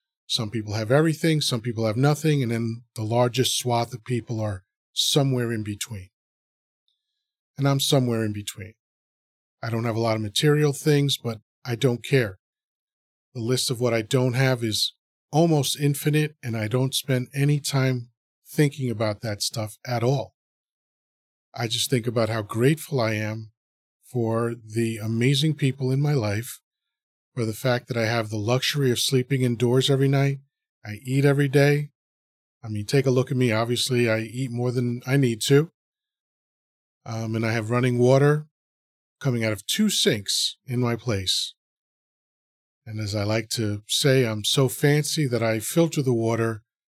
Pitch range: 110-140 Hz